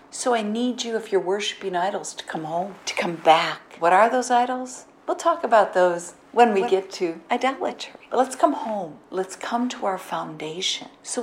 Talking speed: 195 wpm